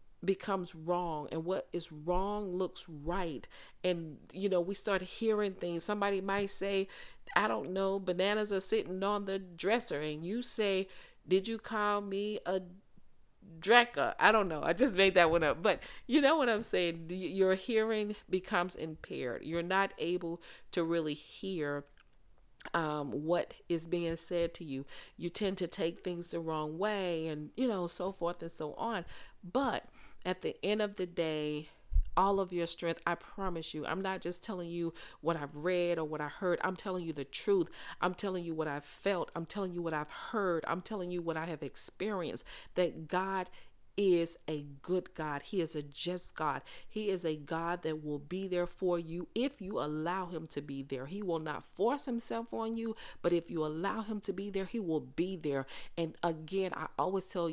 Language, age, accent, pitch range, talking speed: English, 40-59, American, 160-195 Hz, 195 wpm